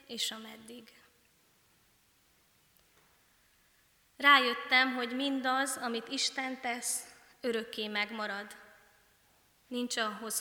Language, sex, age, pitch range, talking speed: Hungarian, female, 20-39, 210-250 Hz, 65 wpm